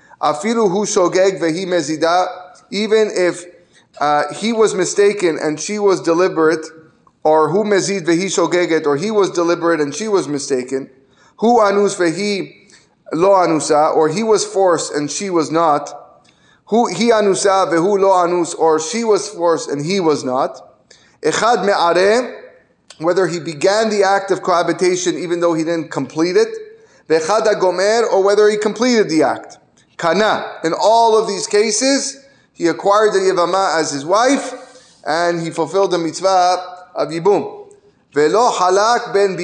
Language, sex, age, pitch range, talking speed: English, male, 20-39, 165-210 Hz, 145 wpm